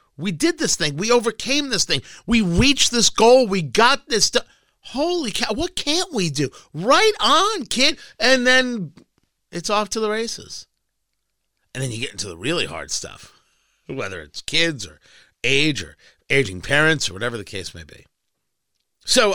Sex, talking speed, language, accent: male, 175 wpm, English, American